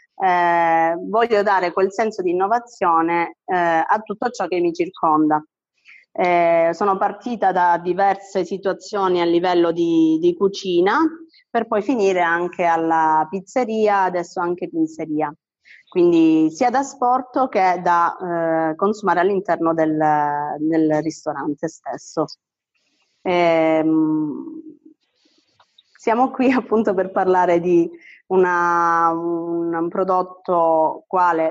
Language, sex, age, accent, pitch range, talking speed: Italian, female, 30-49, native, 170-195 Hz, 110 wpm